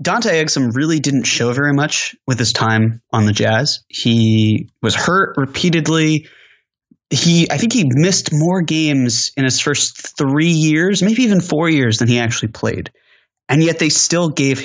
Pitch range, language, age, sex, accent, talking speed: 120-155 Hz, English, 20-39, male, American, 170 wpm